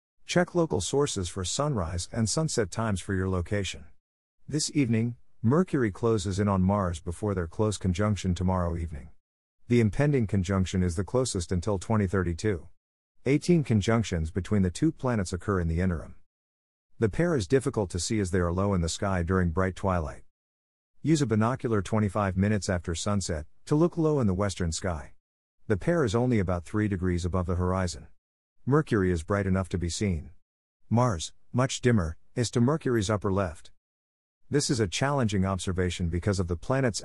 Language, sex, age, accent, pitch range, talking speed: English, male, 50-69, American, 85-110 Hz, 170 wpm